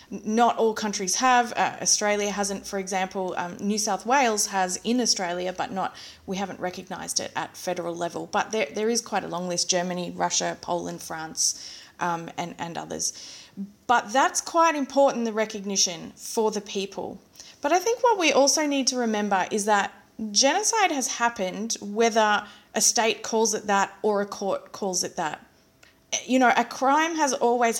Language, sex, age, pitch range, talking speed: English, female, 20-39, 195-250 Hz, 175 wpm